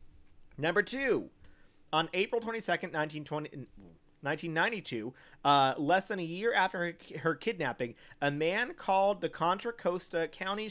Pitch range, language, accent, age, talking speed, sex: 135-175 Hz, English, American, 30-49, 125 wpm, male